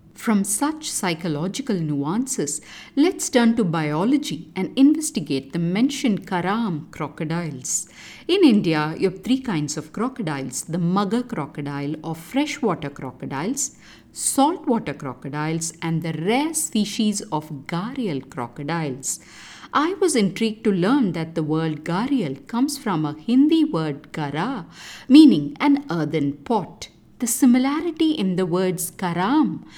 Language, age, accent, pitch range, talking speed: English, 50-69, Indian, 160-260 Hz, 125 wpm